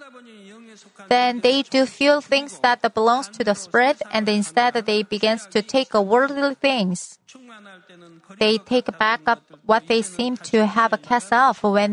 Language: Korean